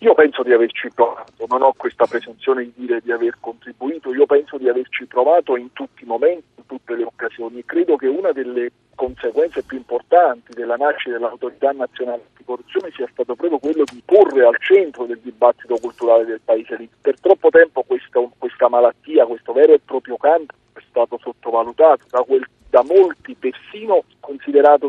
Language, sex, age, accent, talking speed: Italian, male, 50-69, native, 180 wpm